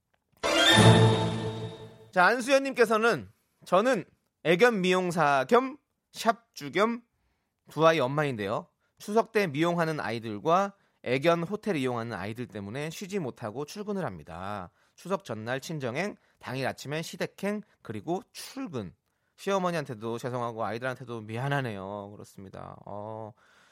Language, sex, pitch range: Korean, male, 110-170 Hz